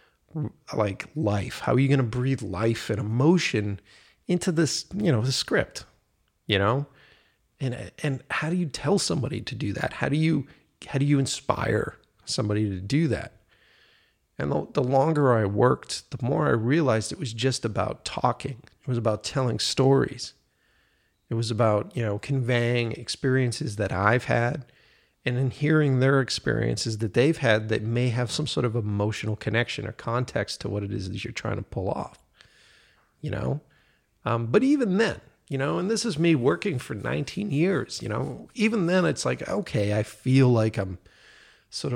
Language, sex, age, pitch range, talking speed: English, male, 40-59, 110-150 Hz, 180 wpm